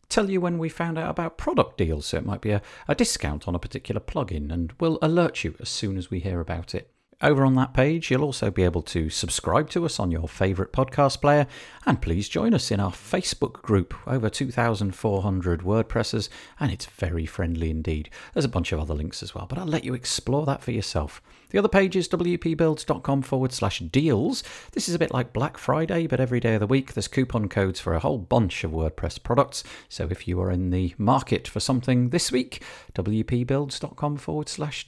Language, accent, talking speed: English, British, 215 wpm